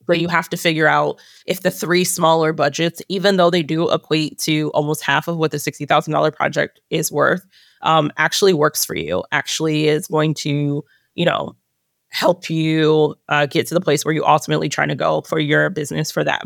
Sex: female